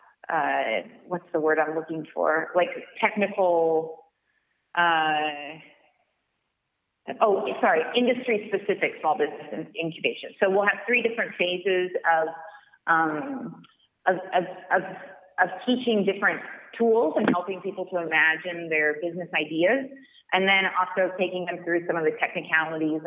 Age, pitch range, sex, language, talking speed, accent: 30-49, 165-200 Hz, female, English, 125 wpm, American